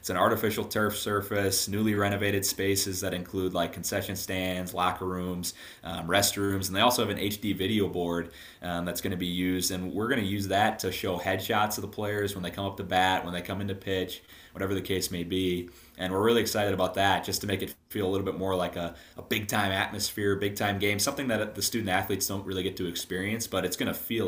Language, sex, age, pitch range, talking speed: English, male, 20-39, 90-100 Hz, 235 wpm